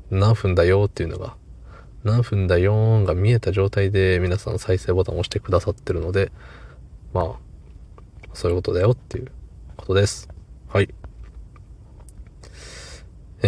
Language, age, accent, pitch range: Japanese, 20-39, native, 85-105 Hz